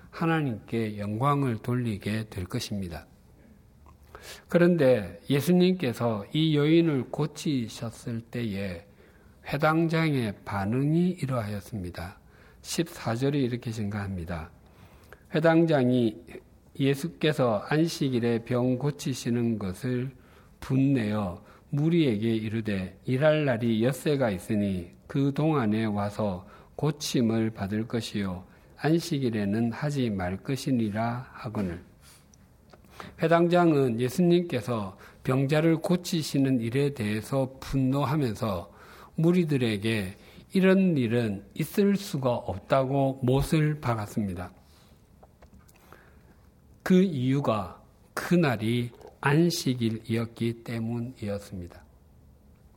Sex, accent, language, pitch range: male, native, Korean, 105-150 Hz